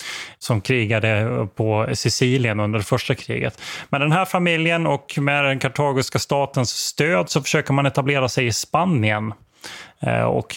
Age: 30-49